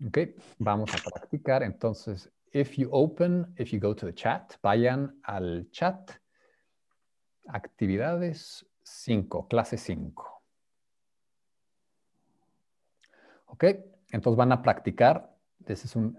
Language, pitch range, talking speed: English, 105-155 Hz, 110 wpm